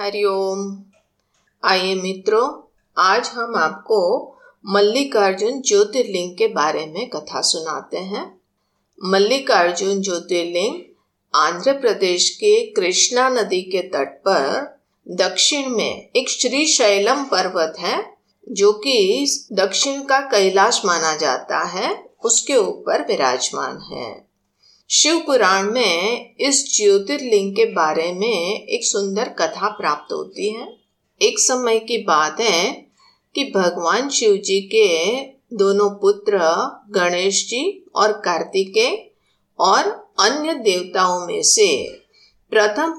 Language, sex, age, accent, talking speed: Hindi, female, 50-69, native, 110 wpm